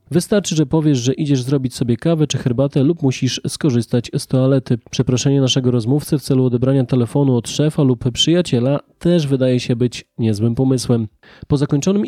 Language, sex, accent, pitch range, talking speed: Polish, male, native, 125-150 Hz, 170 wpm